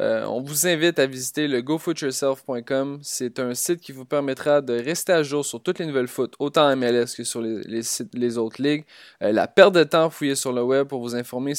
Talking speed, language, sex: 240 wpm, French, male